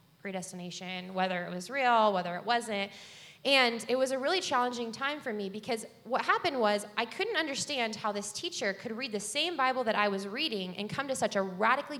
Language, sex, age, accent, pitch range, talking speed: English, female, 20-39, American, 190-240 Hz, 210 wpm